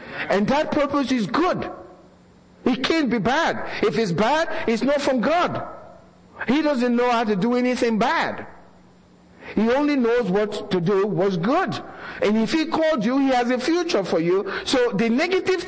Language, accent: English, Nigerian